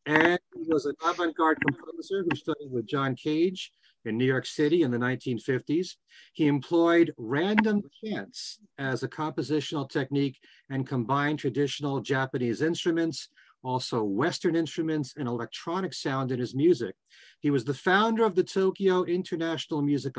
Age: 40-59